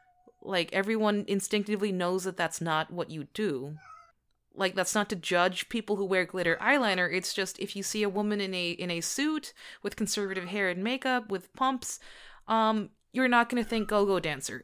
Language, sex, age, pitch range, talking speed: English, female, 20-39, 165-210 Hz, 195 wpm